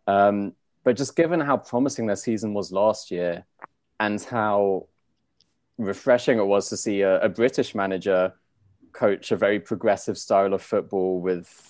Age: 20-39